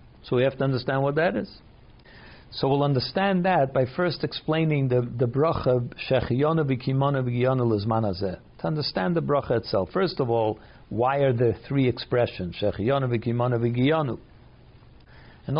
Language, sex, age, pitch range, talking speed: English, male, 60-79, 120-150 Hz, 125 wpm